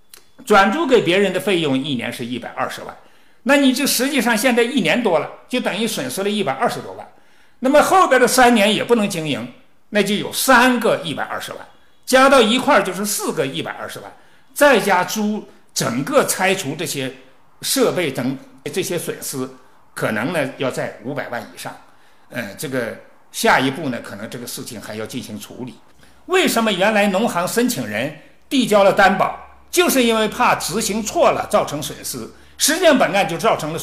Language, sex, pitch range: Chinese, male, 160-255 Hz